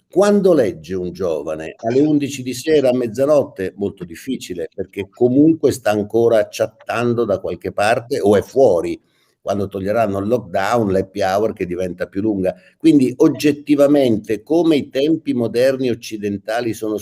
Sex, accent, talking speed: male, native, 145 wpm